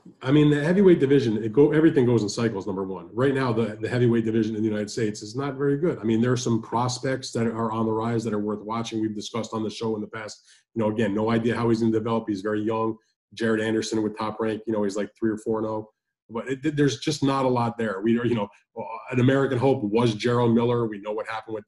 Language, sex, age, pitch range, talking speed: English, male, 20-39, 105-120 Hz, 275 wpm